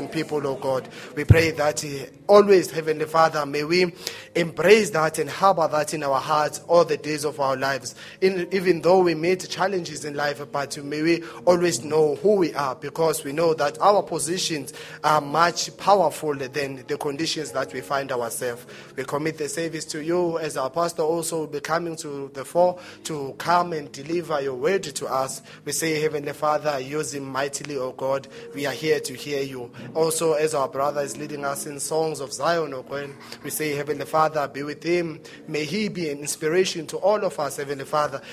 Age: 30-49